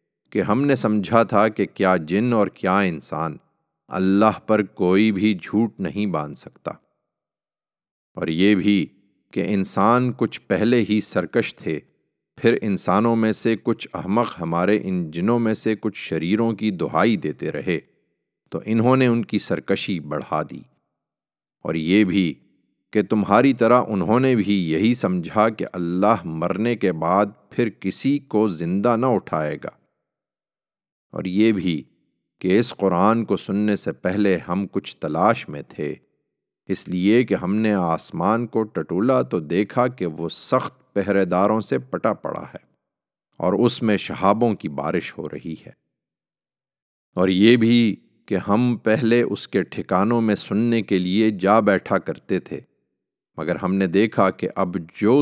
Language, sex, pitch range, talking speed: Urdu, male, 95-115 Hz, 155 wpm